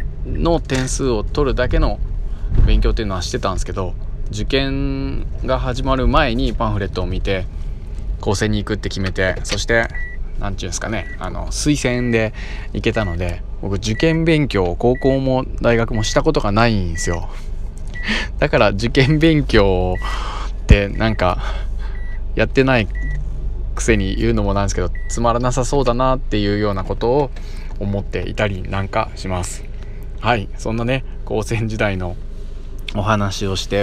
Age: 20-39